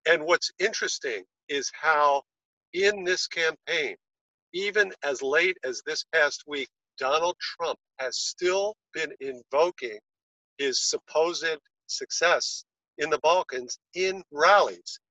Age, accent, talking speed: 50-69, American, 115 wpm